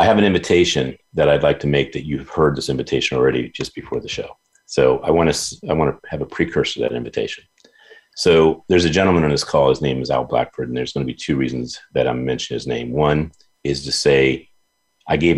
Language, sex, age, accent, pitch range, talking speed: English, male, 40-59, American, 65-80 Hz, 245 wpm